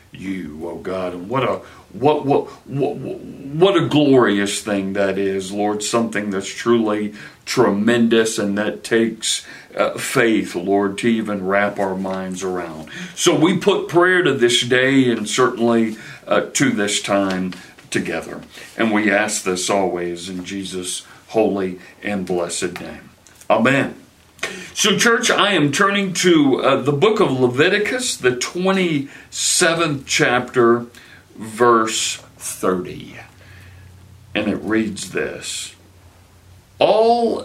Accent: American